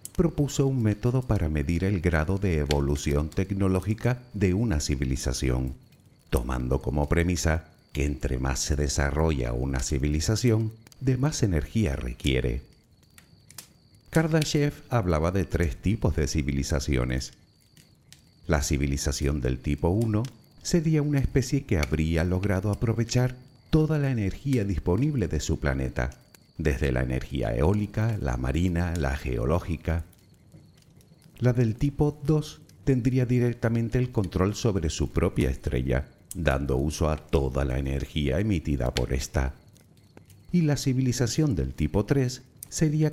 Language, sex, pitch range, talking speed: Spanish, male, 70-120 Hz, 125 wpm